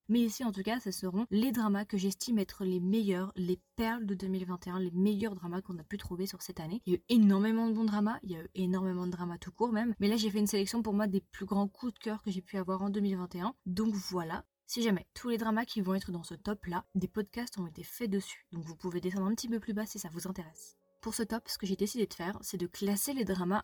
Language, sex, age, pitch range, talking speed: French, female, 20-39, 180-215 Hz, 285 wpm